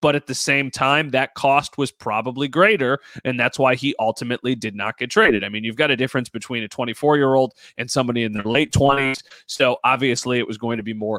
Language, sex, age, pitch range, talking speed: English, male, 30-49, 120-150 Hz, 225 wpm